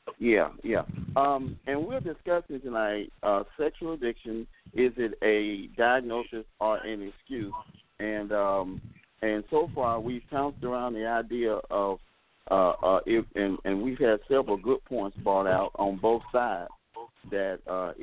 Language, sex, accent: English, male, American